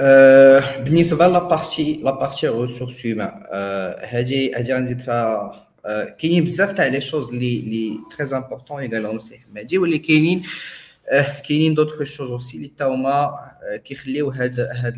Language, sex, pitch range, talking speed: Arabic, male, 120-155 Hz, 130 wpm